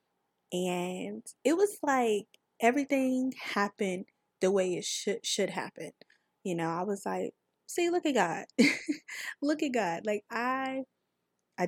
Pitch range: 185-230 Hz